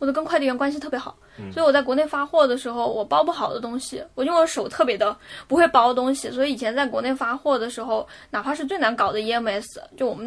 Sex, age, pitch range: female, 10-29, 245-290 Hz